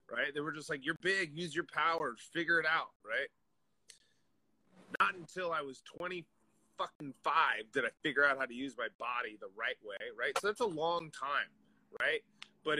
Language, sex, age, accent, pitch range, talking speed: English, male, 30-49, American, 145-185 Hz, 190 wpm